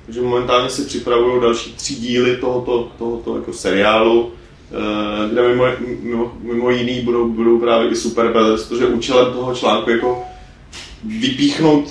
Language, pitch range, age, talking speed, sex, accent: Czech, 115-130 Hz, 30-49, 145 wpm, male, native